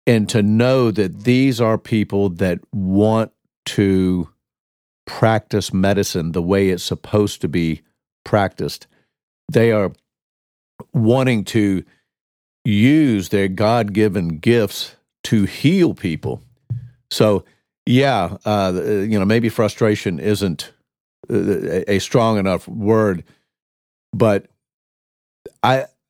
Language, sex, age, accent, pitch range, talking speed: English, male, 50-69, American, 90-110 Hz, 105 wpm